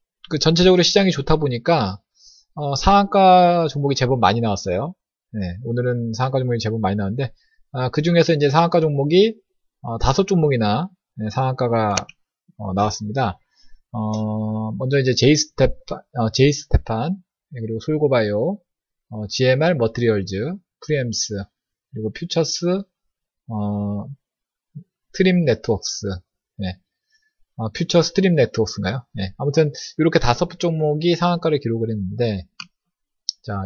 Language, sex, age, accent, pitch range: Korean, male, 20-39, native, 115-170 Hz